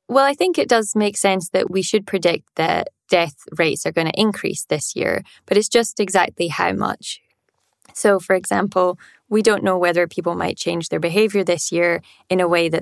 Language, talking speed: English, 205 wpm